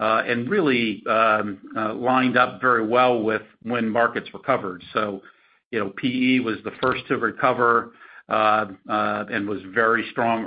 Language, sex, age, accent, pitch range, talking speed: English, male, 50-69, American, 110-125 Hz, 160 wpm